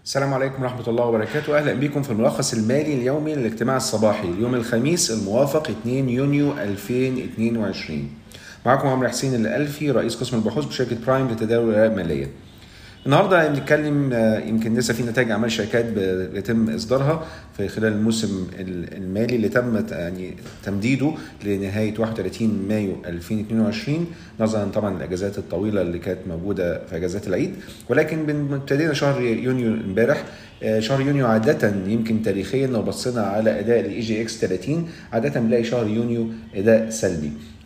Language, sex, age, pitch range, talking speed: Arabic, male, 40-59, 105-125 Hz, 140 wpm